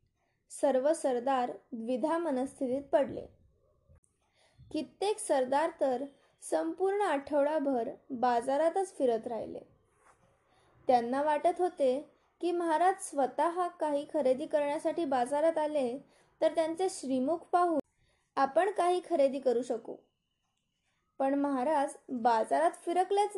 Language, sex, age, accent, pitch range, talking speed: Marathi, female, 20-39, native, 265-330 Hz, 95 wpm